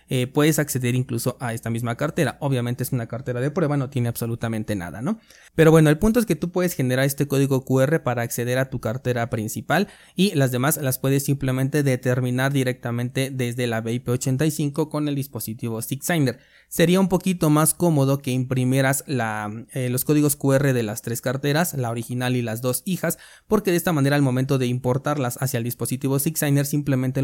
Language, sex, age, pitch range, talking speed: Spanish, male, 20-39, 125-150 Hz, 190 wpm